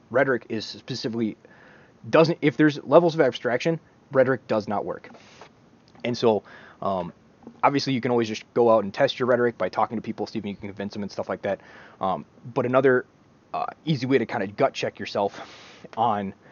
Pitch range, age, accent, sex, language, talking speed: 105-130 Hz, 20-39, American, male, English, 195 wpm